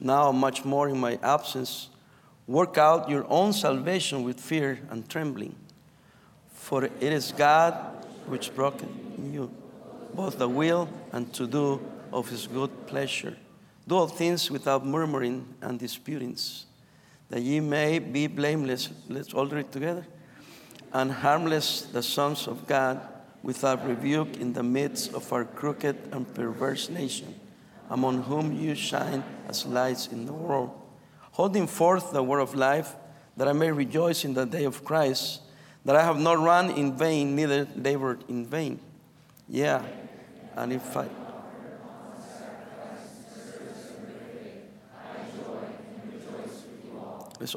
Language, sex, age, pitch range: English, male, 50-69, 130-165 Hz